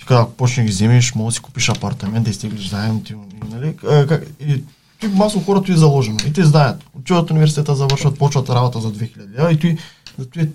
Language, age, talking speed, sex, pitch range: Bulgarian, 20-39, 180 wpm, male, 120-150 Hz